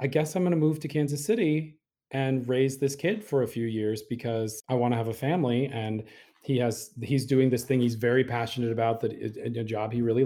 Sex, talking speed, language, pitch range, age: male, 235 wpm, English, 115-140 Hz, 30-49